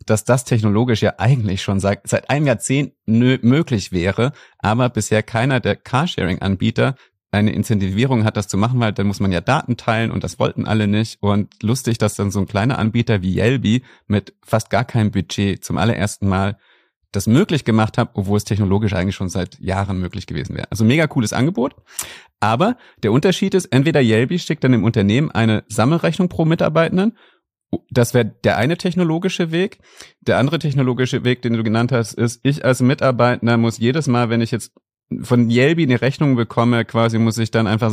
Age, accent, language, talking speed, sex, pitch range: 30-49, German, German, 185 wpm, male, 105-125 Hz